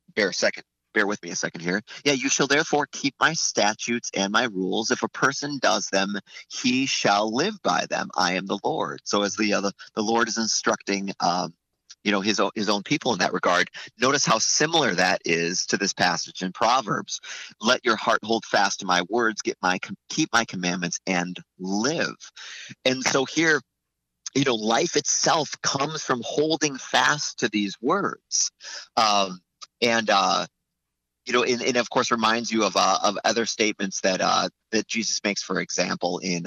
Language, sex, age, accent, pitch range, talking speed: English, male, 30-49, American, 100-135 Hz, 185 wpm